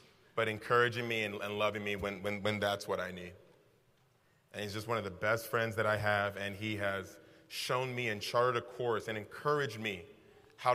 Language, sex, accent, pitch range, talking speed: English, male, American, 105-130 Hz, 205 wpm